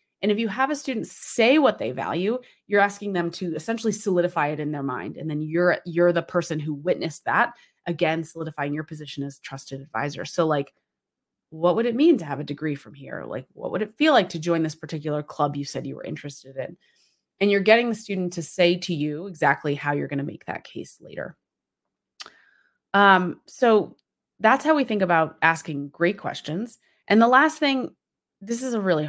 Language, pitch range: English, 155-210 Hz